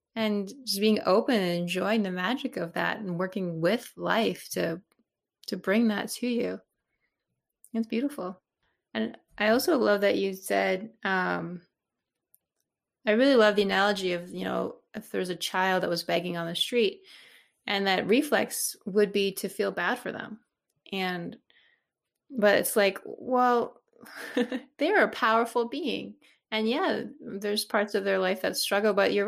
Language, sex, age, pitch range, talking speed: English, female, 20-39, 185-225 Hz, 160 wpm